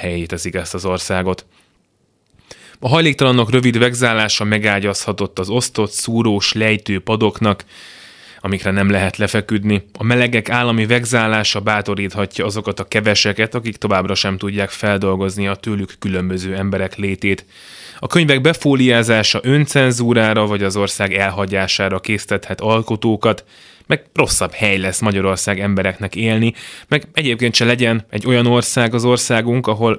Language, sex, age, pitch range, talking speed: Hungarian, male, 20-39, 95-115 Hz, 125 wpm